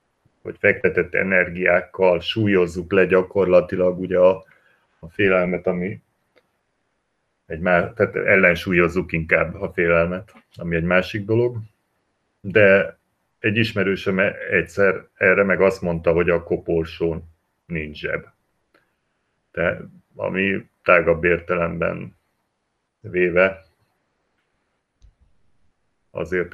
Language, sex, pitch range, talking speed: Hungarian, male, 85-100 Hz, 85 wpm